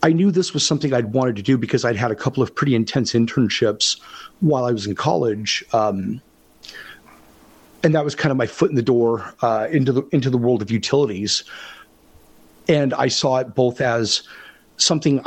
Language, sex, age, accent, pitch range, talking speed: English, male, 40-59, American, 115-145 Hz, 195 wpm